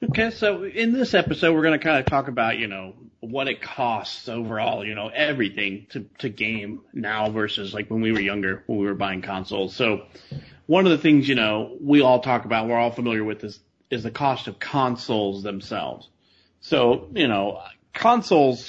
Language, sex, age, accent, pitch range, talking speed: English, male, 30-49, American, 105-135 Hz, 200 wpm